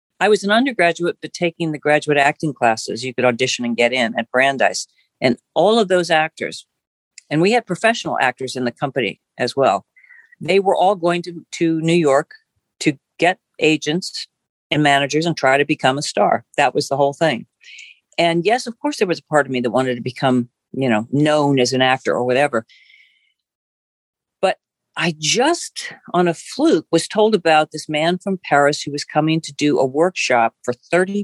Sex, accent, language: female, American, English